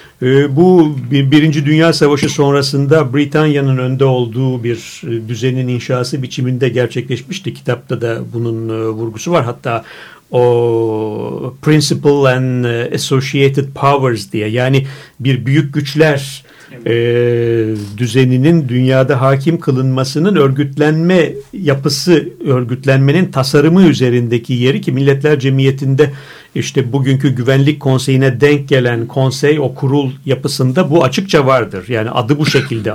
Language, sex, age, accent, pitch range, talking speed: Turkish, male, 50-69, native, 125-150 Hz, 105 wpm